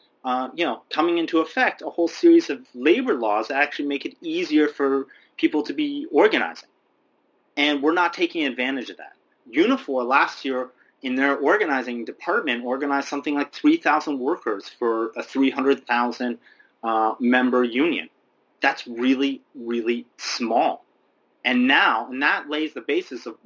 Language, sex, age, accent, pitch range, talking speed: English, male, 30-49, American, 120-145 Hz, 150 wpm